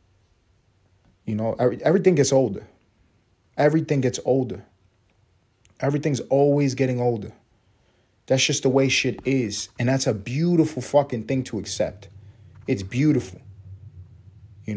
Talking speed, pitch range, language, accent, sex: 120 wpm, 100-140 Hz, English, American, male